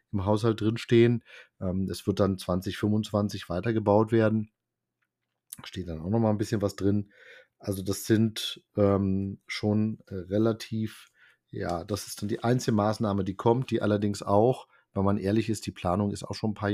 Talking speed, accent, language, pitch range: 170 wpm, German, German, 95-110 Hz